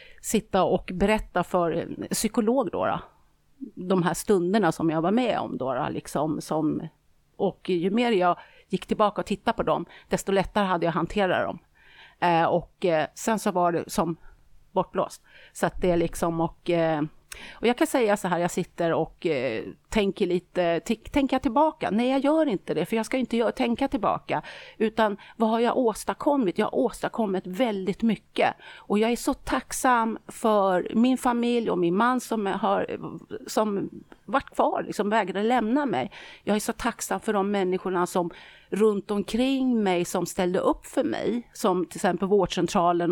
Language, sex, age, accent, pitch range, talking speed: Swedish, female, 40-59, native, 175-225 Hz, 185 wpm